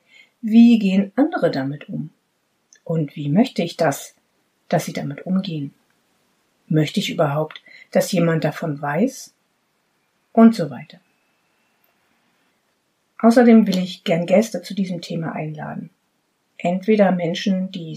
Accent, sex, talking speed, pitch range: German, female, 120 wpm, 170-225 Hz